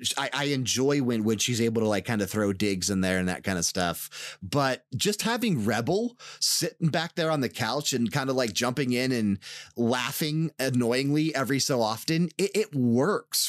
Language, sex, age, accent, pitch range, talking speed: English, male, 30-49, American, 100-145 Hz, 195 wpm